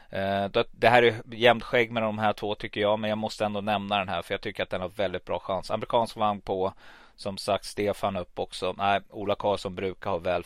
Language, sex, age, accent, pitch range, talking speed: Swedish, male, 30-49, native, 100-120 Hz, 235 wpm